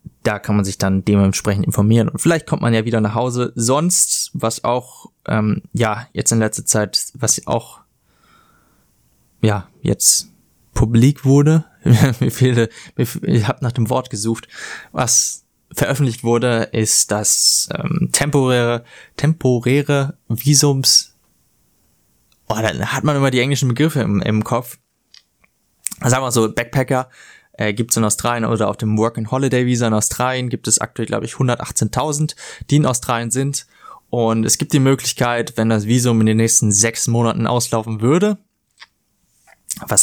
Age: 20-39